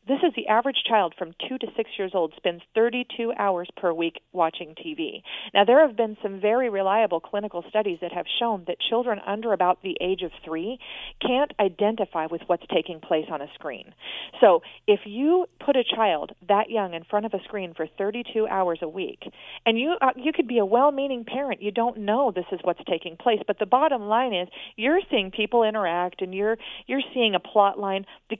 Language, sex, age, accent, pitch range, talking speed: English, female, 40-59, American, 185-240 Hz, 210 wpm